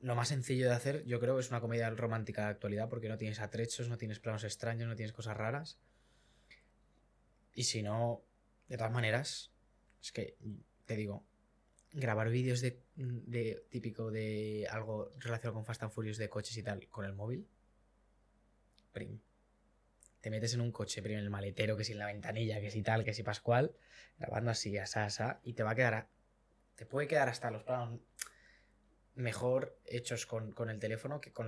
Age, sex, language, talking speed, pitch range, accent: 20-39, male, Spanish, 175 wpm, 105-120 Hz, Spanish